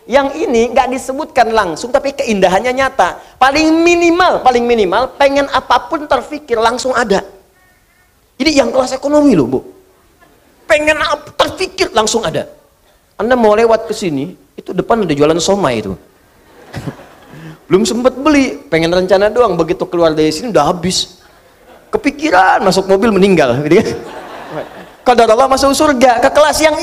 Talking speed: 140 wpm